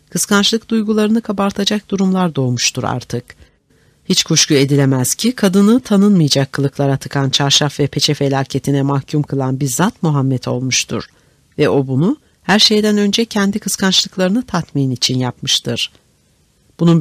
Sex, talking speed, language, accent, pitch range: female, 125 wpm, Turkish, native, 135-190 Hz